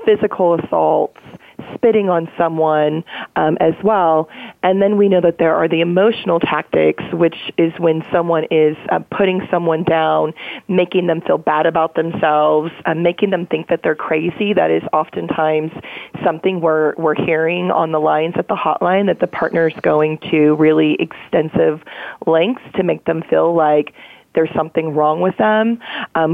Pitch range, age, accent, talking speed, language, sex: 160-180 Hz, 30-49, American, 165 wpm, English, female